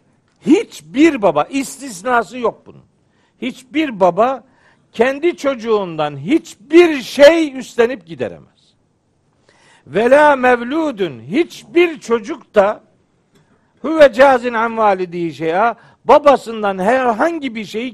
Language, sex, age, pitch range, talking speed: Turkish, male, 60-79, 185-255 Hz, 90 wpm